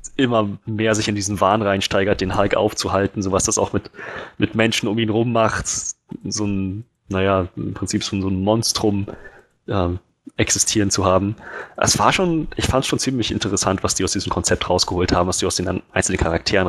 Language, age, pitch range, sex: German, 20-39, 90-110 Hz, male